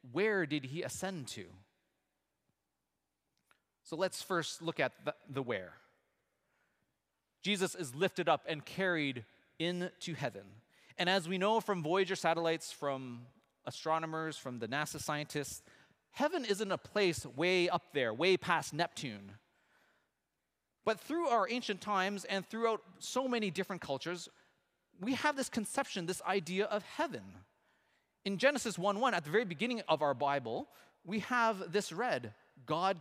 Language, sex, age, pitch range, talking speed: English, male, 30-49, 140-195 Hz, 140 wpm